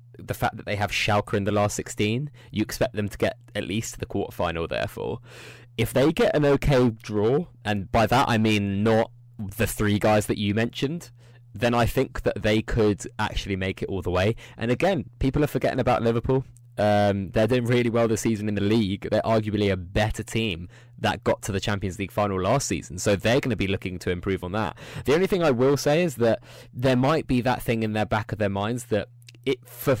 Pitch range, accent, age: 105-125 Hz, British, 20-39